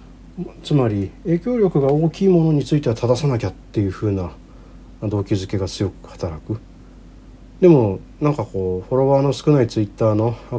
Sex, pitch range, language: male, 90-120 Hz, Japanese